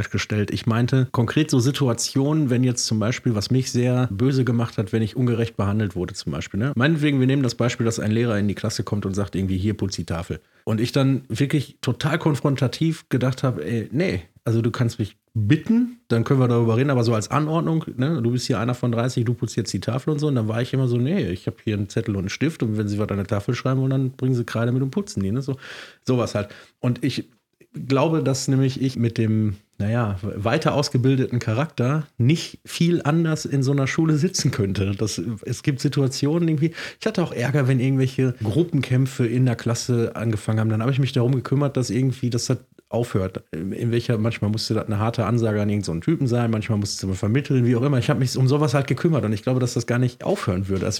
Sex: male